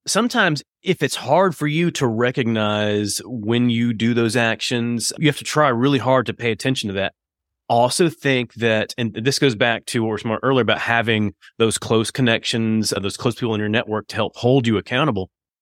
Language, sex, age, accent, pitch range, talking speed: English, male, 30-49, American, 105-130 Hz, 200 wpm